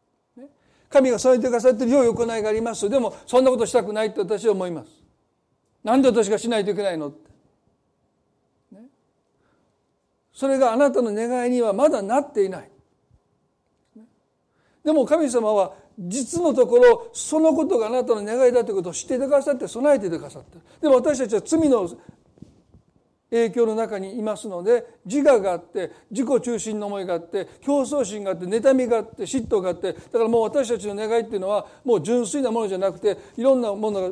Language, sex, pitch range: Japanese, male, 205-275 Hz